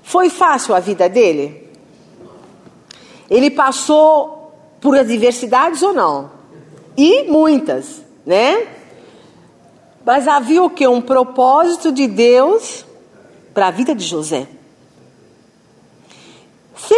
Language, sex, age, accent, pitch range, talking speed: Portuguese, female, 50-69, Brazilian, 255-370 Hz, 100 wpm